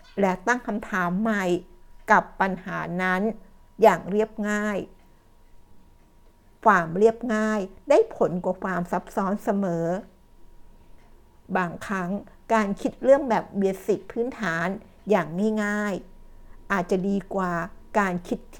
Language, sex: Thai, female